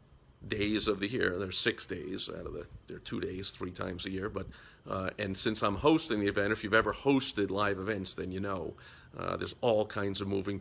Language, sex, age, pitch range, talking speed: English, male, 50-69, 100-120 Hz, 240 wpm